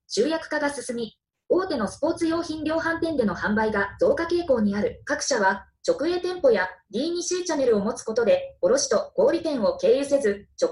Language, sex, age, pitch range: Japanese, female, 20-39, 235-335 Hz